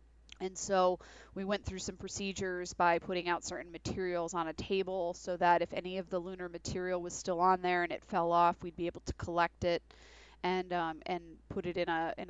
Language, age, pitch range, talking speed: English, 30-49, 170-185 Hz, 220 wpm